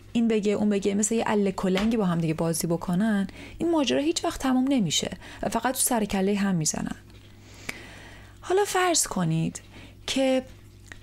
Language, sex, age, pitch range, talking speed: Persian, female, 30-49, 165-250 Hz, 145 wpm